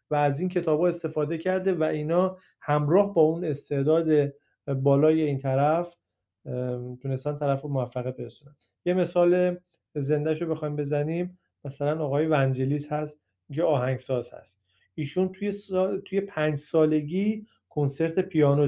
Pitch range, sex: 140-170 Hz, male